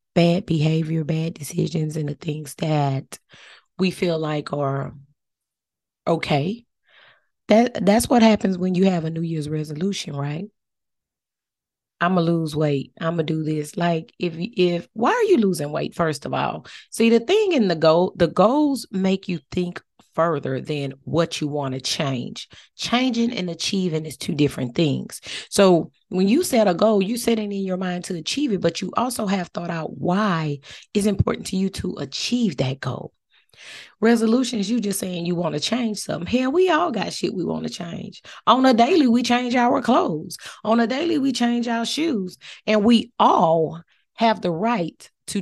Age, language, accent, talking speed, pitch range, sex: 30-49, English, American, 180 wpm, 155-220 Hz, female